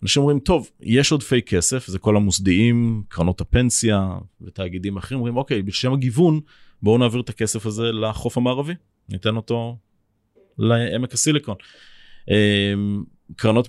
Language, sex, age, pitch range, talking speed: Hebrew, male, 30-49, 95-120 Hz, 125 wpm